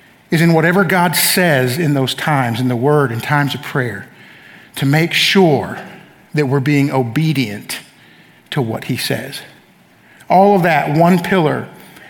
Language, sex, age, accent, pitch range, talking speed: English, male, 50-69, American, 145-185 Hz, 150 wpm